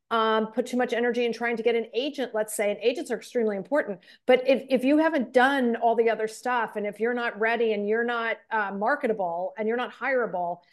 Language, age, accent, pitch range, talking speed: English, 40-59, American, 205-240 Hz, 235 wpm